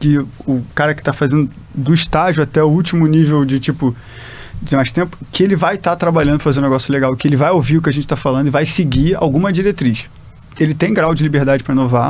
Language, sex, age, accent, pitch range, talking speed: Portuguese, male, 20-39, Brazilian, 140-185 Hz, 250 wpm